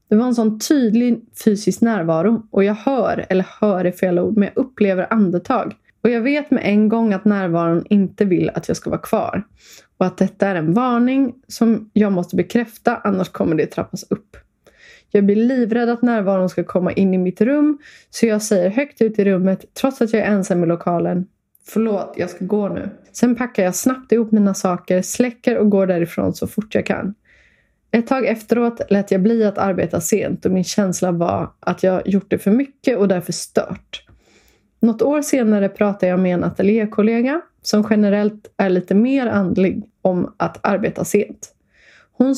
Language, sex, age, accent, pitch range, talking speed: Swedish, female, 20-39, native, 190-235 Hz, 190 wpm